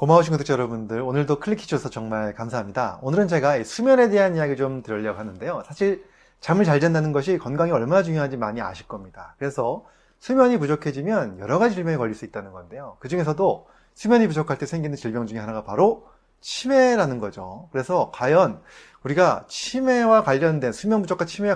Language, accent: Korean, native